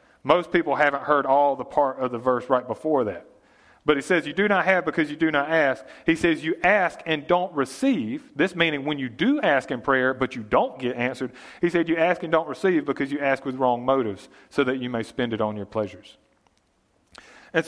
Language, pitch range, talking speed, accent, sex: English, 125-160 Hz, 230 wpm, American, male